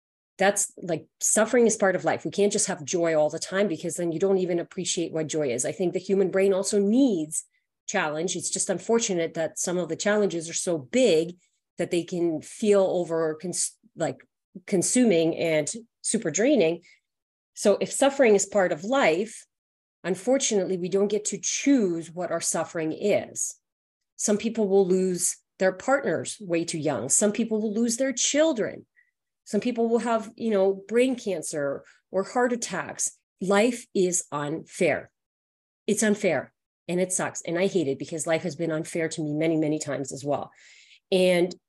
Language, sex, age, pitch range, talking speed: English, female, 30-49, 165-215 Hz, 175 wpm